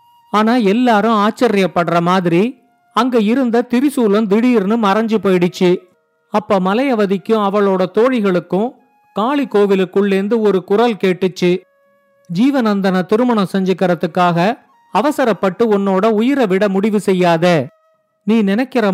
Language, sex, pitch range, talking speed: Tamil, male, 175-225 Hz, 90 wpm